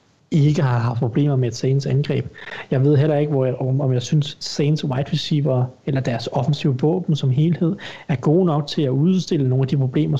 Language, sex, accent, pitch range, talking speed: Danish, male, native, 130-155 Hz, 205 wpm